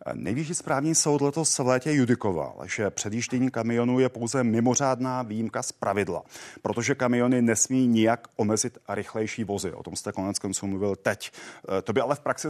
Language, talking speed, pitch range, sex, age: Czech, 165 wpm, 110-135 Hz, male, 30-49